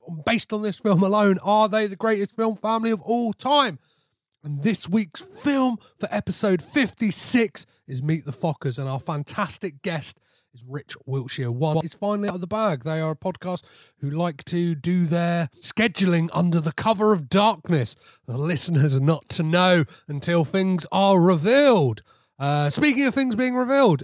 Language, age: English, 30-49